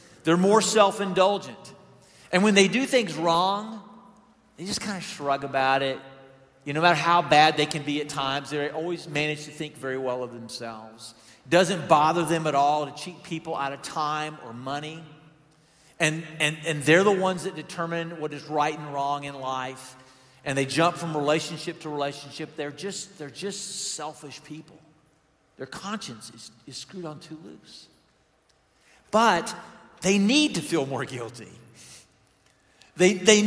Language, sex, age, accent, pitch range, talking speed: English, male, 50-69, American, 145-200 Hz, 170 wpm